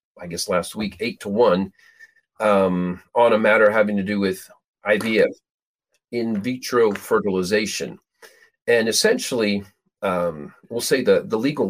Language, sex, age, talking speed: English, male, 40-59, 140 wpm